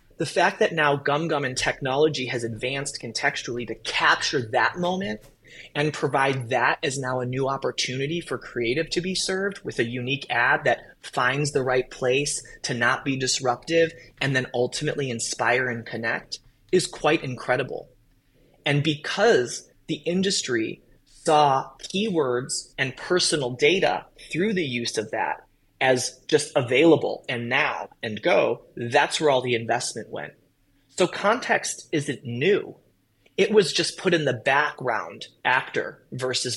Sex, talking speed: male, 145 wpm